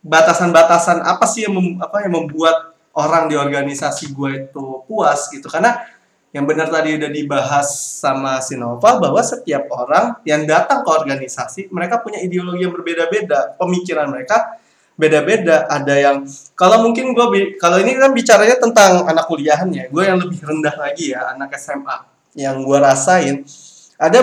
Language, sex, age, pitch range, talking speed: Indonesian, male, 20-39, 145-215 Hz, 160 wpm